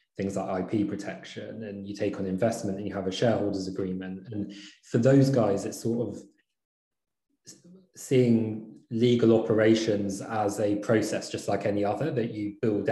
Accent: British